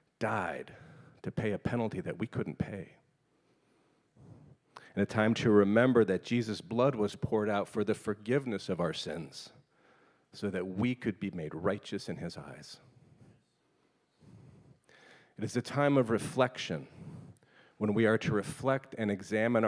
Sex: male